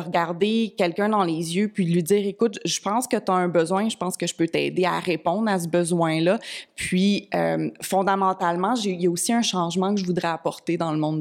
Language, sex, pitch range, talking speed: French, female, 175-220 Hz, 245 wpm